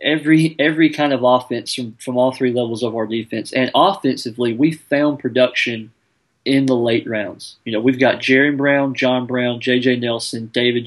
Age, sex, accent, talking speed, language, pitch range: 30-49, male, American, 180 wpm, English, 115-130 Hz